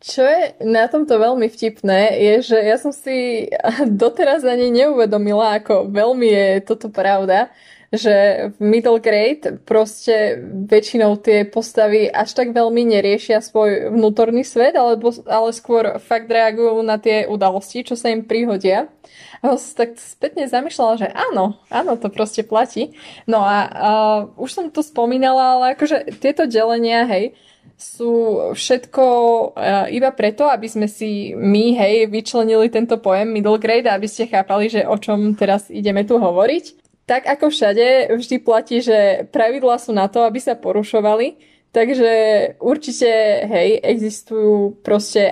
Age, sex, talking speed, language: 20-39, female, 150 wpm, Slovak